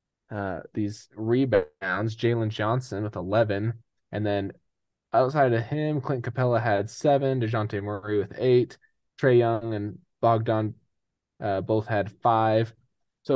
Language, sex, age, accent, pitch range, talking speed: English, male, 20-39, American, 105-120 Hz, 130 wpm